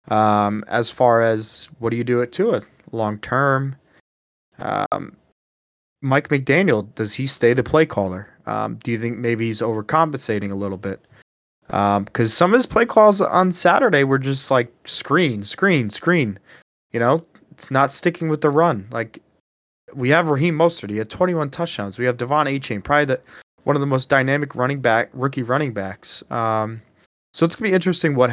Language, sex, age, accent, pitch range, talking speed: English, male, 20-39, American, 110-150 Hz, 185 wpm